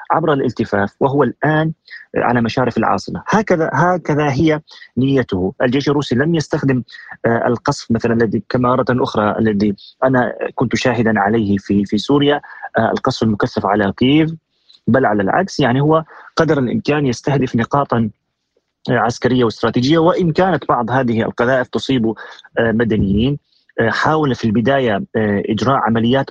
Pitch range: 110-140 Hz